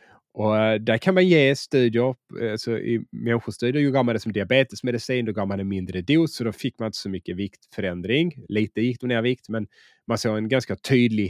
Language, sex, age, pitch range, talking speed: Swedish, male, 30-49, 100-130 Hz, 210 wpm